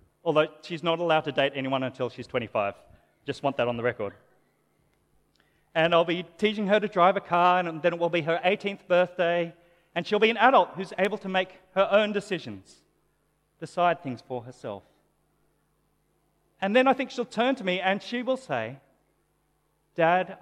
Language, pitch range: English, 165-215 Hz